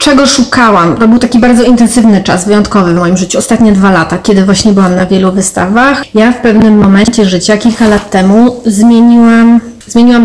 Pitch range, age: 200-235 Hz, 30-49